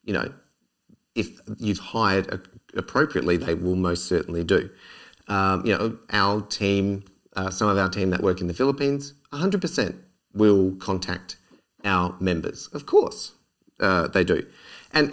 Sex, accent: male, Australian